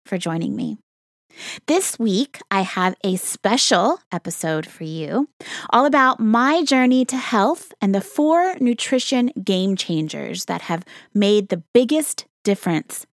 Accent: American